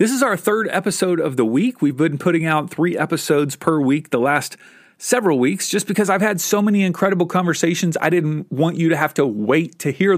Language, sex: English, male